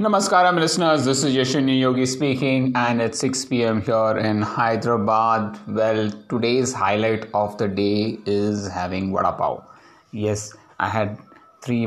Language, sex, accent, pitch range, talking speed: English, male, Indian, 100-120 Hz, 140 wpm